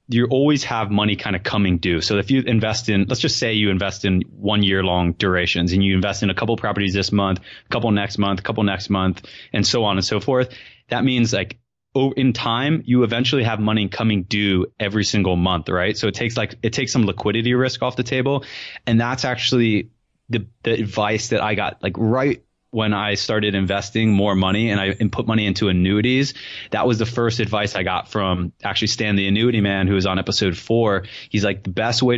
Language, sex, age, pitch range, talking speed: English, male, 20-39, 100-120 Hz, 220 wpm